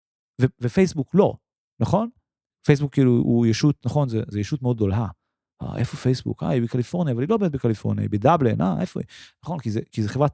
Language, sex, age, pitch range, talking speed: Hebrew, male, 30-49, 120-185 Hz, 205 wpm